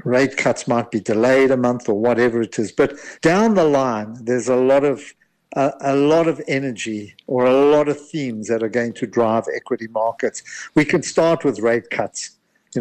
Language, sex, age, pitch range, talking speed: English, male, 60-79, 115-145 Hz, 200 wpm